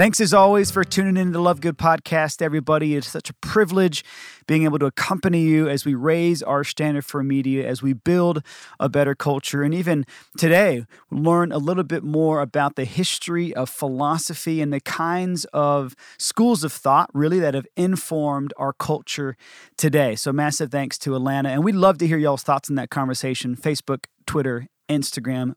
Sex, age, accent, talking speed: male, 30-49, American, 190 wpm